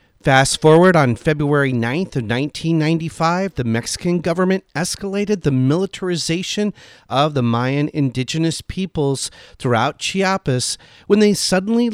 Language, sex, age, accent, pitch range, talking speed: English, male, 40-59, American, 130-195 Hz, 115 wpm